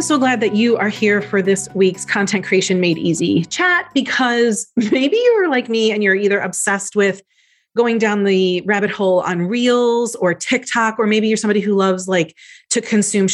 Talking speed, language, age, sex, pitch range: 190 wpm, English, 30-49, female, 195-260 Hz